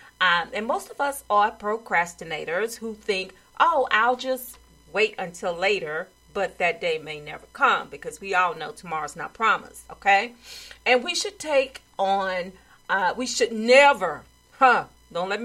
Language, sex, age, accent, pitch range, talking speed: English, female, 40-59, American, 190-255 Hz, 160 wpm